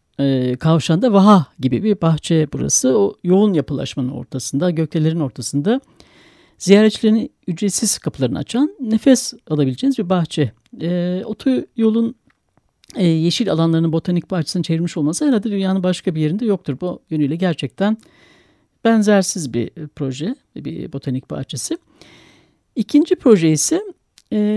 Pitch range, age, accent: 145-230 Hz, 60-79, native